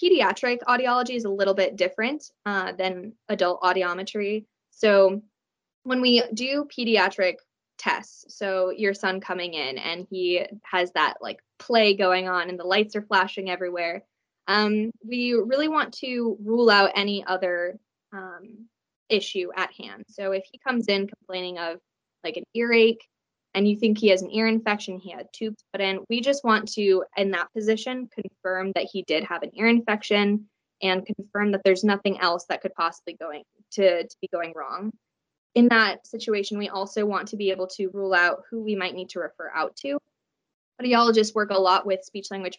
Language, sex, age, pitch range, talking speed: English, female, 10-29, 185-225 Hz, 180 wpm